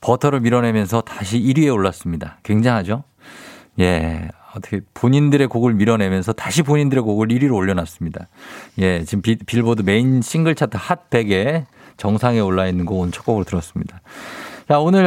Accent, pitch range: native, 100-145 Hz